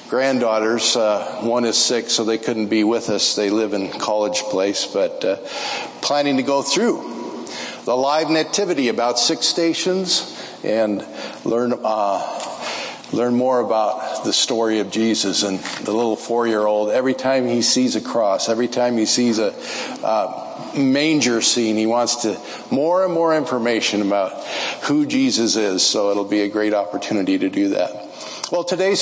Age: 50-69